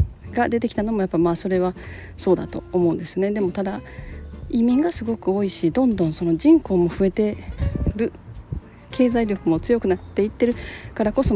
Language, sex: Japanese, female